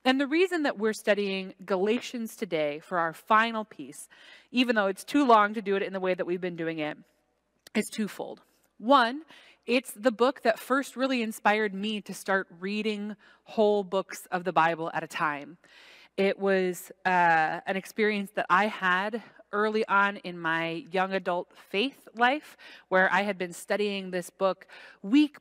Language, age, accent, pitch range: English, 20-39, American, 180-230 Hz